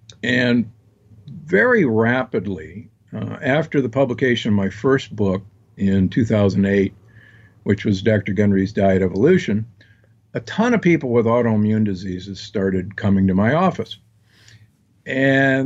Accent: American